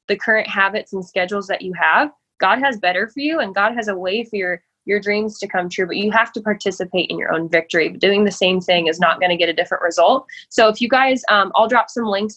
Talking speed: 265 wpm